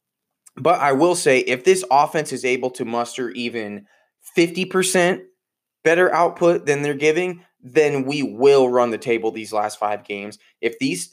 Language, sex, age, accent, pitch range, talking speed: English, male, 20-39, American, 115-135 Hz, 160 wpm